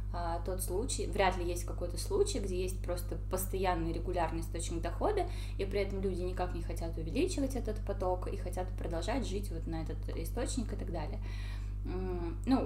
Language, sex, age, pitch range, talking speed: Russian, female, 20-39, 90-105 Hz, 170 wpm